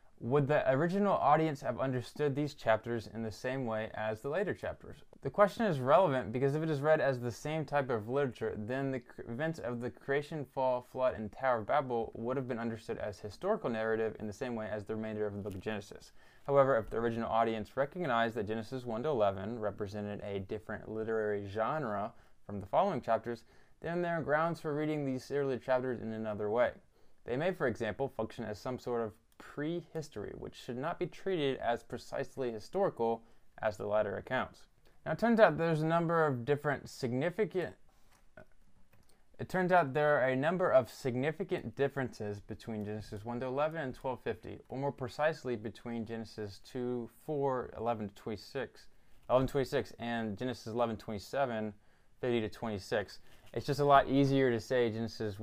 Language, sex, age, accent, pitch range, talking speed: English, male, 20-39, American, 110-145 Hz, 180 wpm